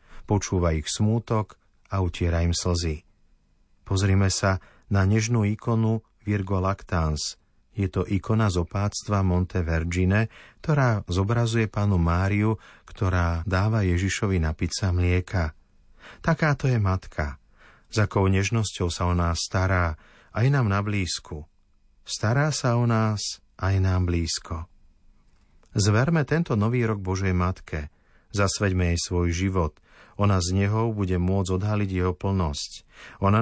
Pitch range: 90-110 Hz